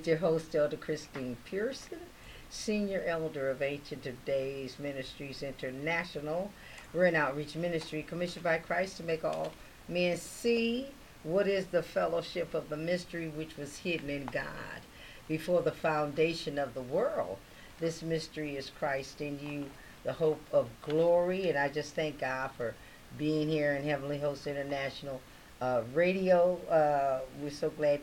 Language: English